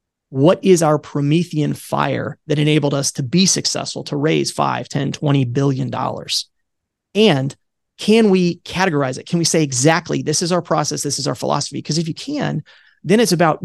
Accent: American